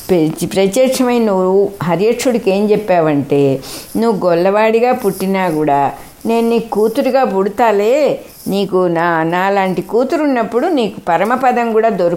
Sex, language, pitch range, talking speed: female, English, 165-220 Hz, 75 wpm